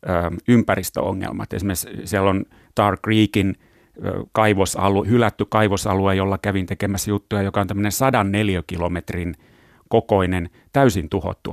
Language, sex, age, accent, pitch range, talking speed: Finnish, male, 30-49, native, 95-115 Hz, 110 wpm